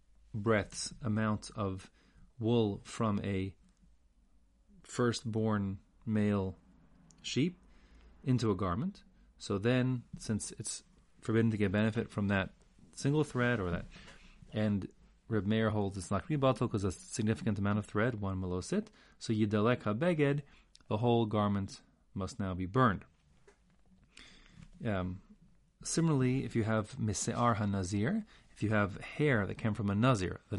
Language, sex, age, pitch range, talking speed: English, male, 30-49, 95-120 Hz, 135 wpm